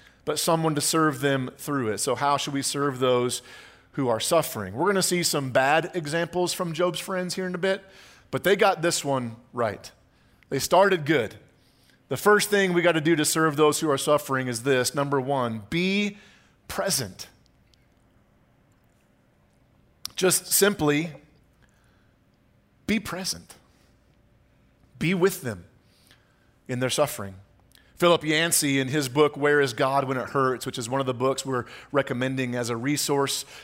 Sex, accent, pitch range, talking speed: male, American, 130-185 Hz, 160 wpm